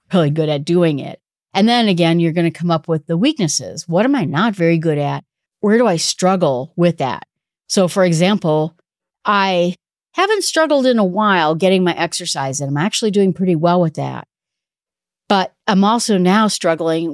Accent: American